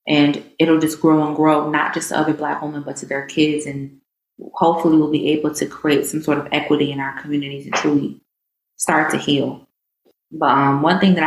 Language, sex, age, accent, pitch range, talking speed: English, female, 20-39, American, 140-160 Hz, 215 wpm